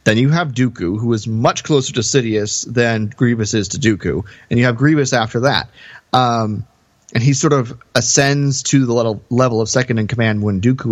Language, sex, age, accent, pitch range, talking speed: English, male, 30-49, American, 110-145 Hz, 200 wpm